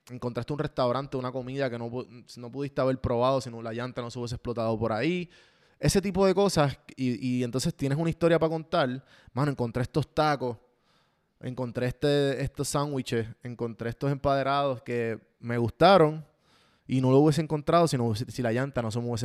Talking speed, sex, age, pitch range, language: 185 wpm, male, 20-39, 120-145 Hz, Spanish